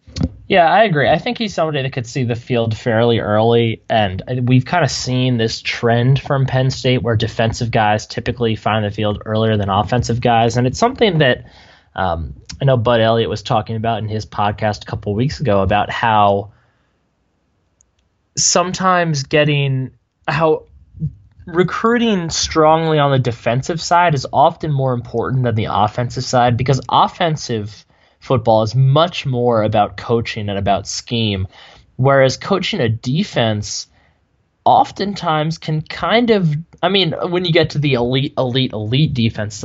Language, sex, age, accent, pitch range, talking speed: English, male, 10-29, American, 105-140 Hz, 155 wpm